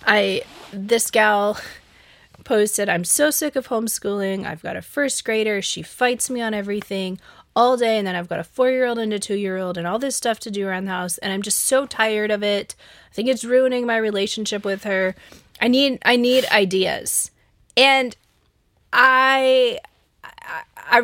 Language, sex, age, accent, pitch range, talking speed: English, female, 20-39, American, 190-240 Hz, 175 wpm